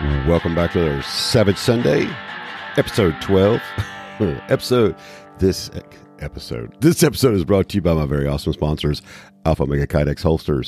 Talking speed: 145 wpm